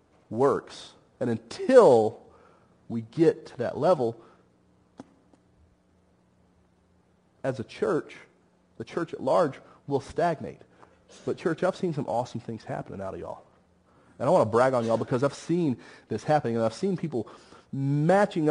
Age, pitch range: 40-59, 95-150 Hz